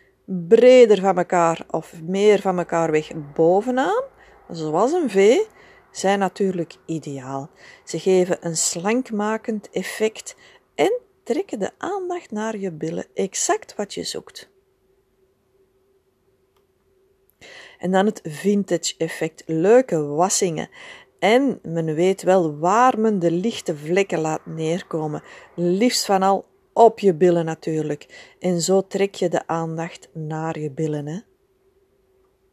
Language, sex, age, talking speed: Dutch, female, 40-59, 120 wpm